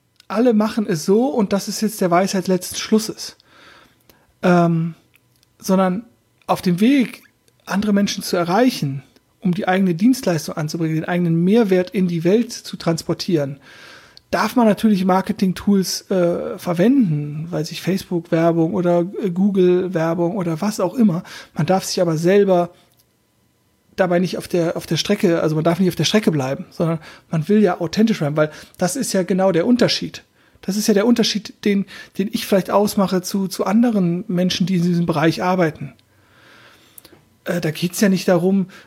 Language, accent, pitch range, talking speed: German, German, 170-205 Hz, 165 wpm